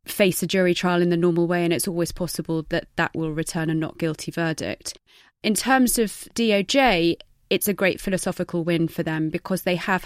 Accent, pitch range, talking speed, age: British, 160-175 Hz, 205 wpm, 20-39